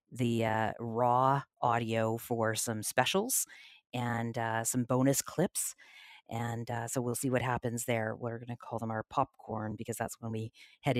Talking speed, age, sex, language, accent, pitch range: 170 wpm, 40-59, female, English, American, 115-125 Hz